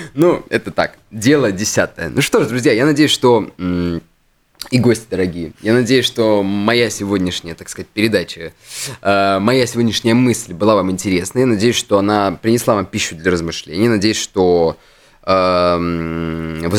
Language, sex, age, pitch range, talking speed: Russian, male, 20-39, 95-120 Hz, 150 wpm